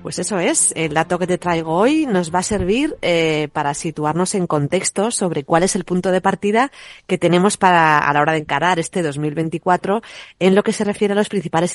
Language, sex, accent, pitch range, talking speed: Spanish, female, Spanish, 155-200 Hz, 220 wpm